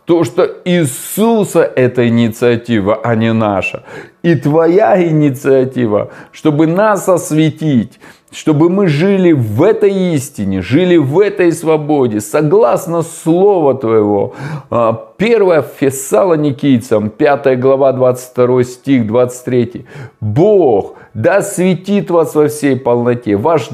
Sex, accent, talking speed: male, native, 110 wpm